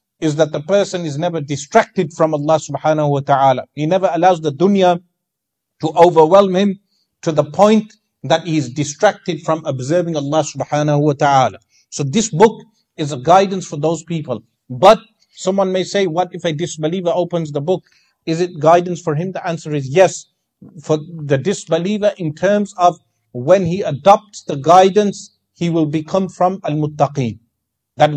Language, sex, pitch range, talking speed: English, male, 150-200 Hz, 170 wpm